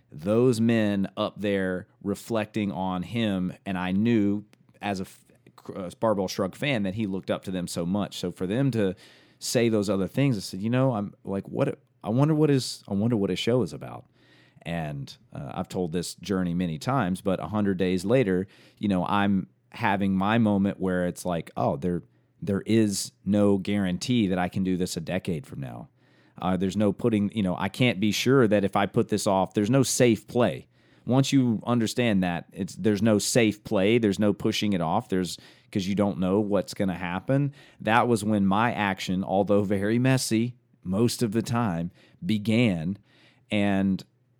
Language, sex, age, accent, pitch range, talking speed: English, male, 30-49, American, 95-120 Hz, 190 wpm